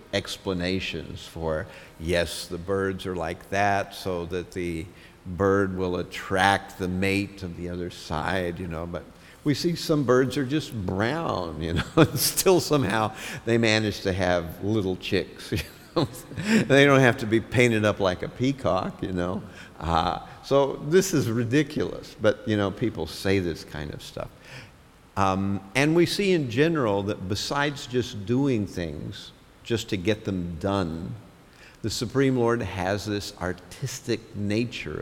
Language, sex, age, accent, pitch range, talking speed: English, male, 50-69, American, 90-115 Hz, 155 wpm